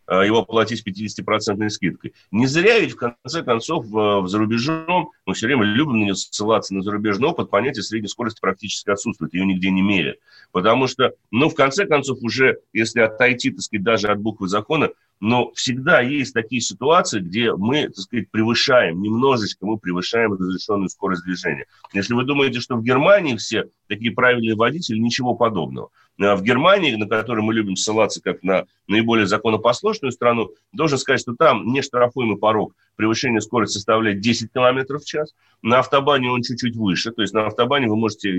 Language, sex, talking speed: Russian, male, 170 wpm